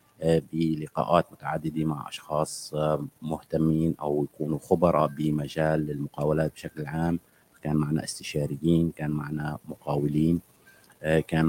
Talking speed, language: 100 wpm, Arabic